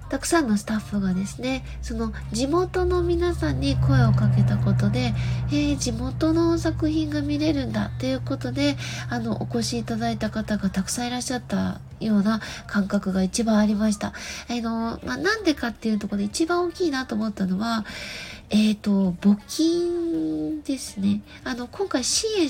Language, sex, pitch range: Japanese, female, 200-275 Hz